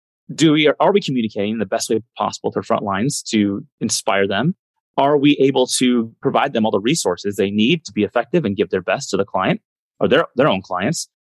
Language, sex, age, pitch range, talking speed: English, male, 30-49, 105-140 Hz, 225 wpm